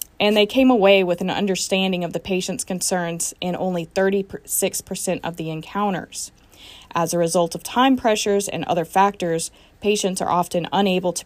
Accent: American